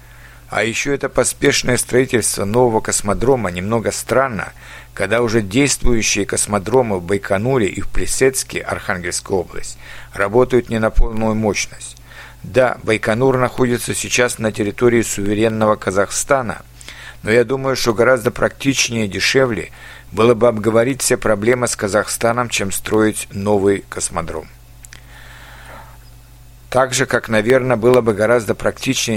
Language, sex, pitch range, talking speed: Russian, male, 105-125 Hz, 125 wpm